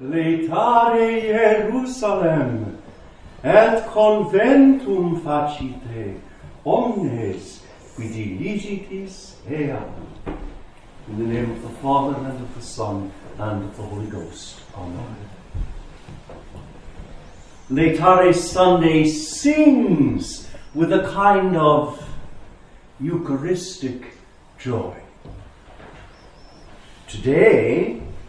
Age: 60-79